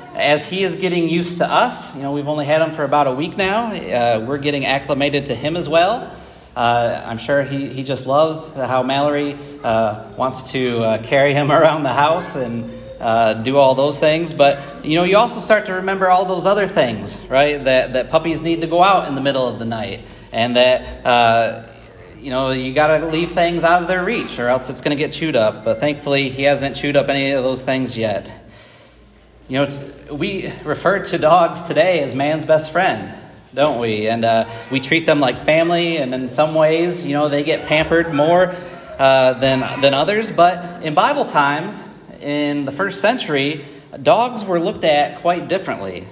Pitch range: 130-170 Hz